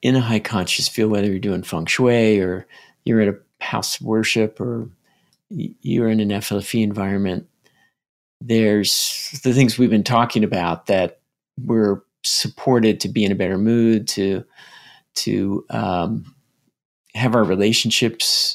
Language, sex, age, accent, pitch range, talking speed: English, male, 50-69, American, 100-115 Hz, 145 wpm